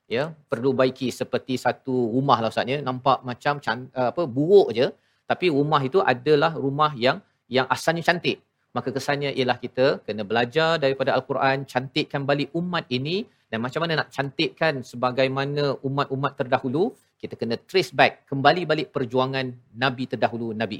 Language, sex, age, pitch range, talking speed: Malayalam, male, 40-59, 125-145 Hz, 145 wpm